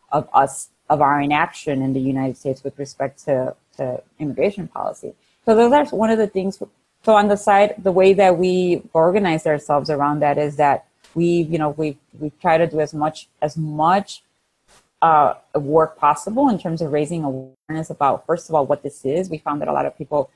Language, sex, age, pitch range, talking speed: English, female, 30-49, 145-180 Hz, 205 wpm